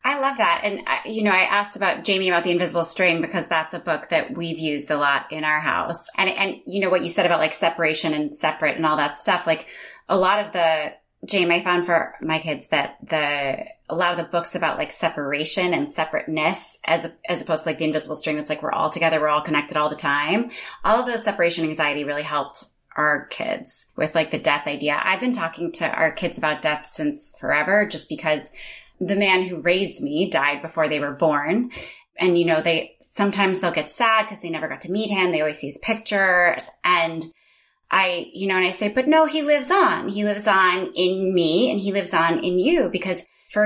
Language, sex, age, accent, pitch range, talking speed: English, female, 30-49, American, 160-210 Hz, 230 wpm